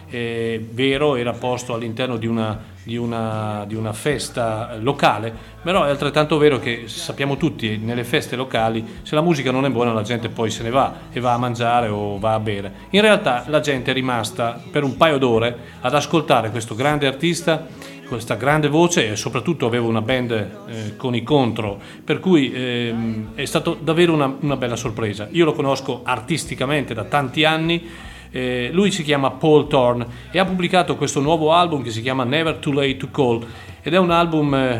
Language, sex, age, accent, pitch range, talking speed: Italian, male, 40-59, native, 120-155 Hz, 185 wpm